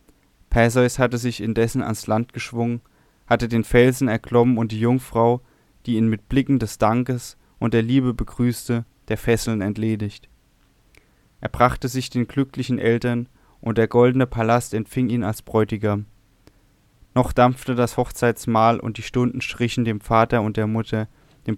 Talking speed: 155 wpm